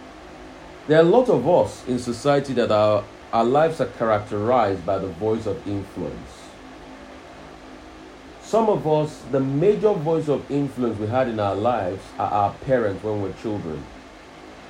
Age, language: 40-59, English